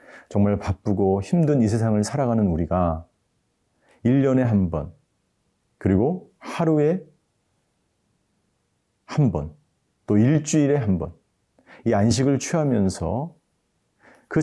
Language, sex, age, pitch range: Korean, male, 40-59, 95-135 Hz